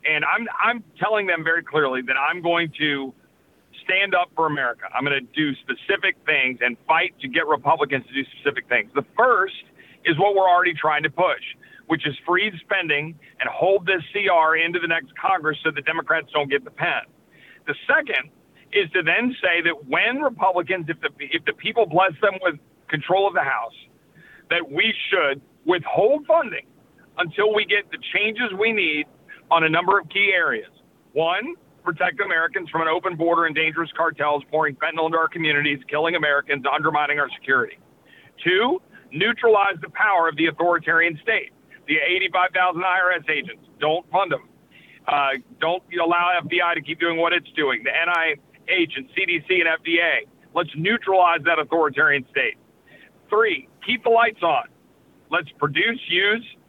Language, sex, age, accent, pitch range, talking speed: English, male, 40-59, American, 155-200 Hz, 170 wpm